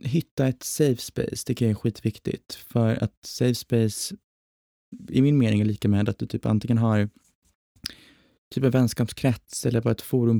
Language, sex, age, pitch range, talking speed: Swedish, male, 20-39, 110-130 Hz, 175 wpm